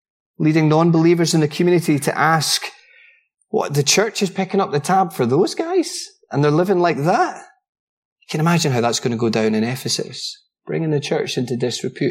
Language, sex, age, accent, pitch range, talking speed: English, male, 20-39, British, 130-190 Hz, 195 wpm